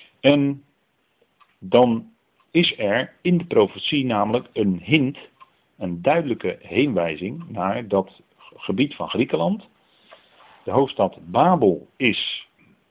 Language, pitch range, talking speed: Dutch, 90-115 Hz, 100 wpm